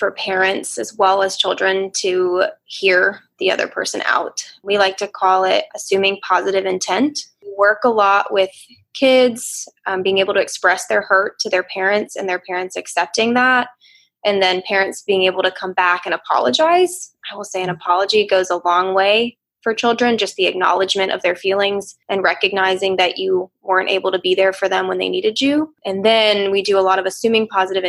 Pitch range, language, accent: 185-215 Hz, English, American